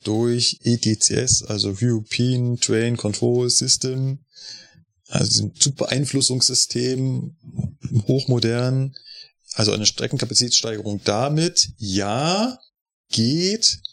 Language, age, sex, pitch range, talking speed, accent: German, 30-49, male, 110-140 Hz, 75 wpm, German